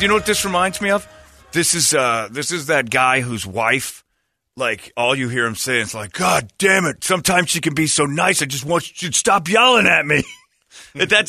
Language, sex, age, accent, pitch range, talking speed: English, male, 40-59, American, 115-170 Hz, 230 wpm